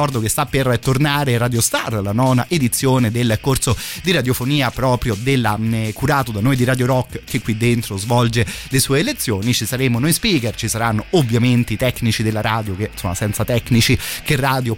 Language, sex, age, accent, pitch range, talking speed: Italian, male, 30-49, native, 115-135 Hz, 185 wpm